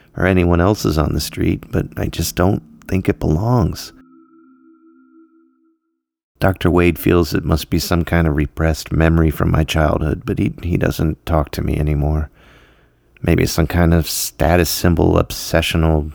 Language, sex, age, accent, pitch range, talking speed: English, male, 30-49, American, 75-100 Hz, 155 wpm